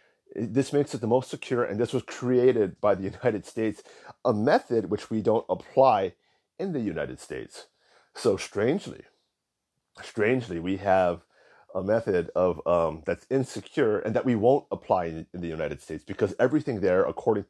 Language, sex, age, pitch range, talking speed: English, male, 30-49, 100-130 Hz, 170 wpm